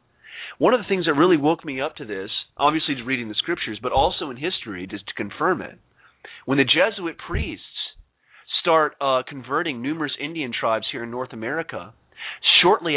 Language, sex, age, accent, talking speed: English, male, 40-59, American, 180 wpm